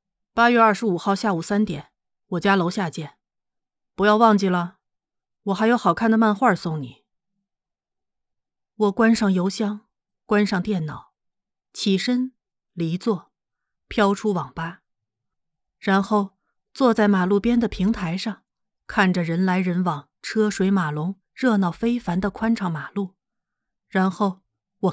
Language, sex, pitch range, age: Chinese, female, 175-215 Hz, 30-49